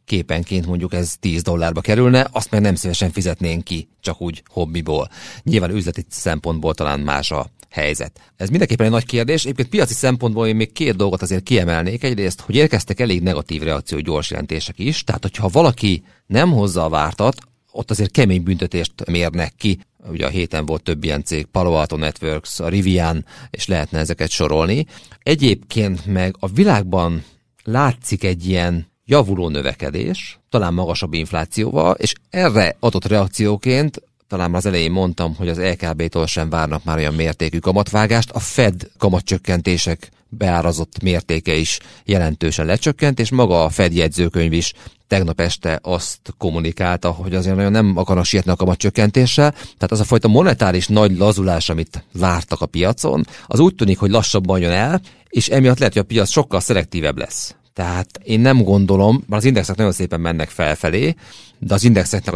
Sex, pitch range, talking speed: male, 85-110 Hz, 165 wpm